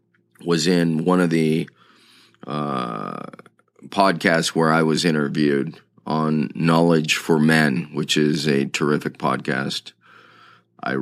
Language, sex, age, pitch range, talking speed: English, male, 30-49, 80-95 Hz, 115 wpm